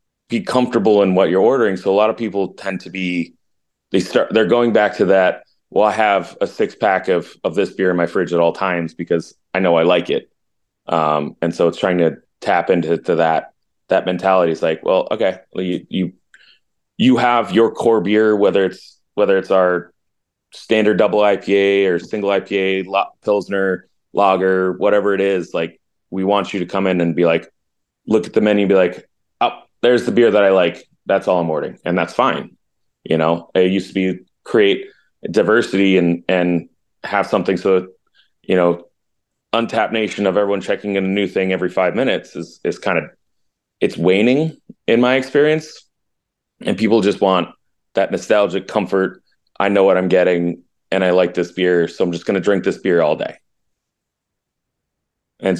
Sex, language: male, English